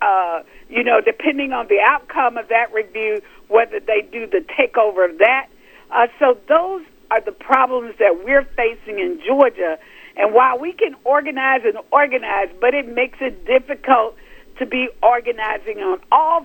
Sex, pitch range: female, 230-320 Hz